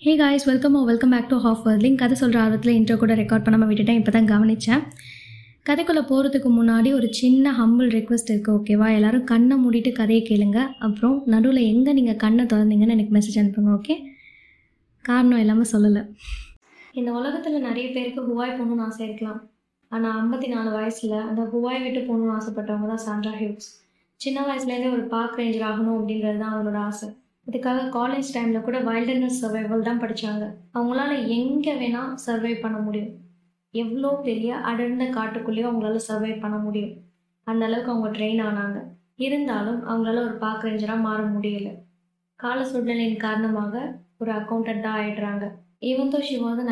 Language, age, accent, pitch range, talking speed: Tamil, 20-39, native, 215-245 Hz, 150 wpm